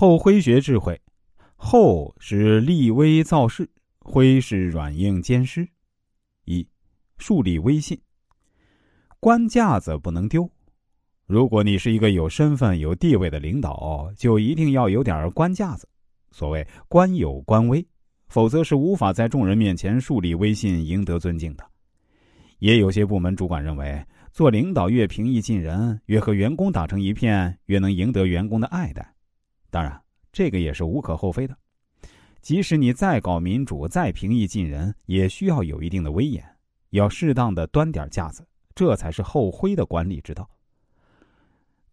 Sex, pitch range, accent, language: male, 90-135 Hz, native, Chinese